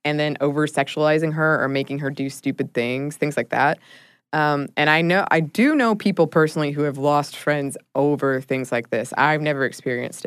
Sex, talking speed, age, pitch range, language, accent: female, 200 wpm, 20-39, 135-165 Hz, English, American